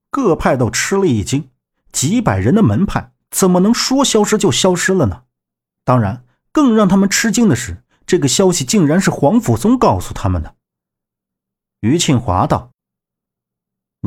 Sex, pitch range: male, 95-140 Hz